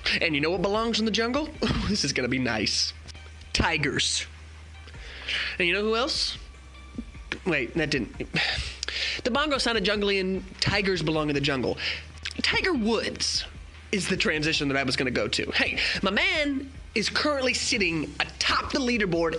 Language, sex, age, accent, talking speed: English, male, 20-39, American, 165 wpm